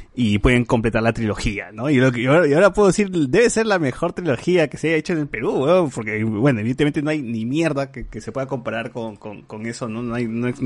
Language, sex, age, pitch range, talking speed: Spanish, male, 30-49, 115-150 Hz, 260 wpm